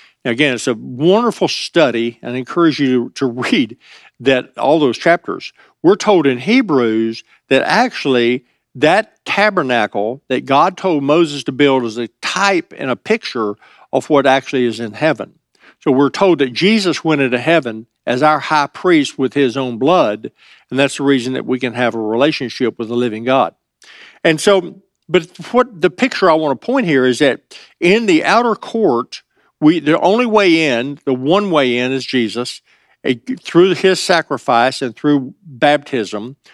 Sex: male